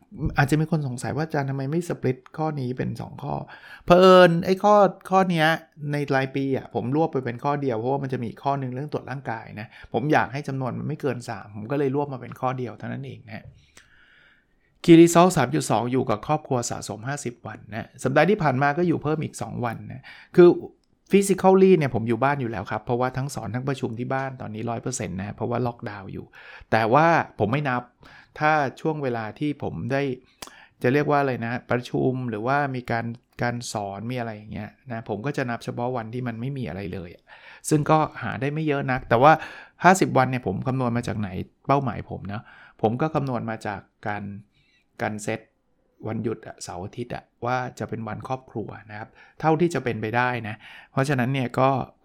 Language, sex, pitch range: Thai, male, 115-145 Hz